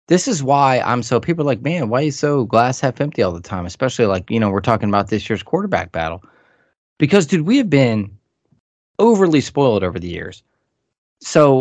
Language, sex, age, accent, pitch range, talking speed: English, male, 20-39, American, 110-145 Hz, 210 wpm